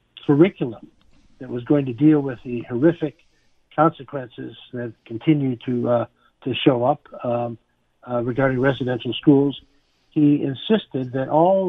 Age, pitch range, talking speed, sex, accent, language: 60-79, 120-150 Hz, 135 wpm, male, American, English